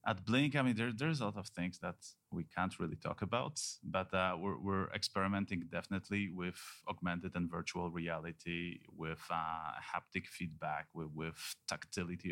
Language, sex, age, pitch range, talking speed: English, male, 30-49, 85-110 Hz, 165 wpm